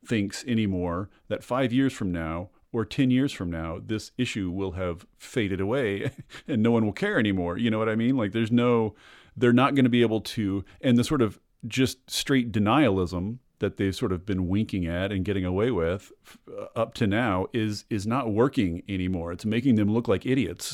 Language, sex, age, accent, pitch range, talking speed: English, male, 40-59, American, 95-125 Hz, 210 wpm